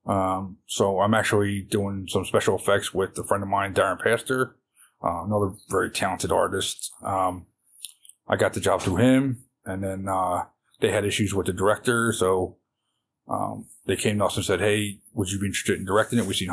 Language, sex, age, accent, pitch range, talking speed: English, male, 20-39, American, 100-120 Hz, 195 wpm